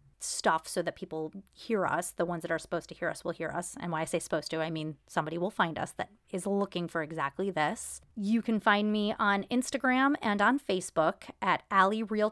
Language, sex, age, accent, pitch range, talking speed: English, female, 30-49, American, 175-230 Hz, 230 wpm